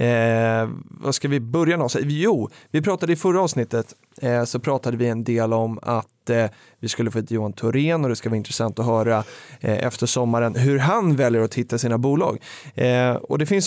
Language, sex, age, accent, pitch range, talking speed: Swedish, male, 20-39, native, 120-145 Hz, 200 wpm